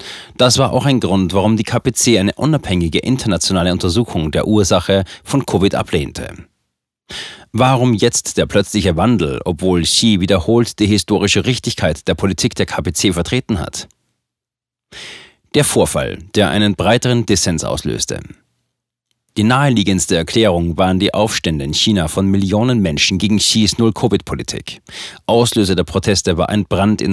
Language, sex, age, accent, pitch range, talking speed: German, male, 40-59, German, 90-110 Hz, 135 wpm